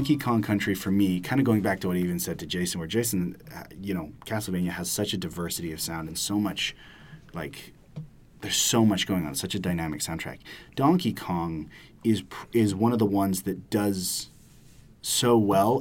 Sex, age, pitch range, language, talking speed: male, 30-49, 90-110 Hz, English, 195 wpm